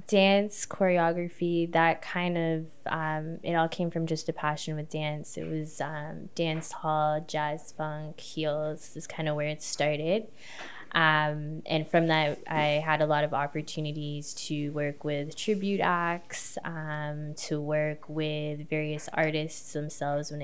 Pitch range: 145-165 Hz